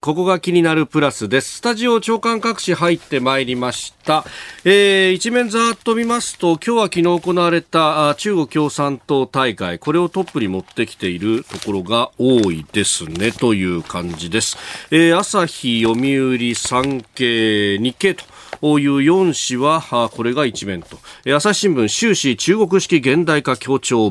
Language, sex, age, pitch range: Japanese, male, 40-59, 110-170 Hz